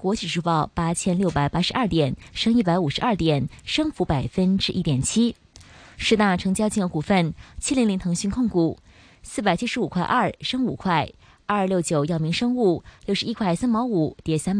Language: Chinese